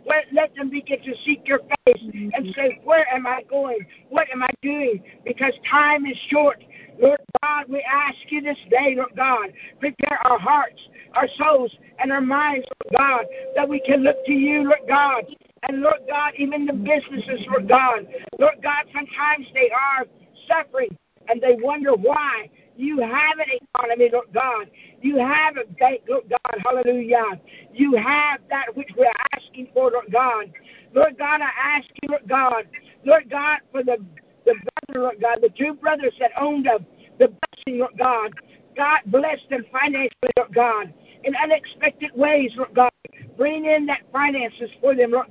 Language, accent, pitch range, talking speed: English, American, 250-290 Hz, 175 wpm